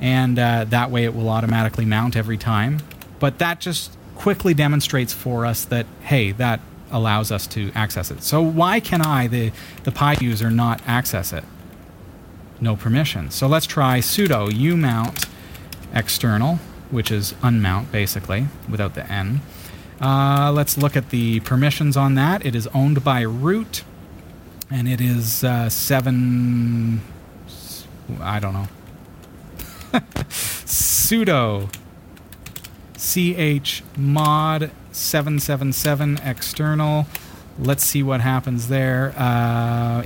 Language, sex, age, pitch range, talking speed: English, male, 30-49, 100-135 Hz, 120 wpm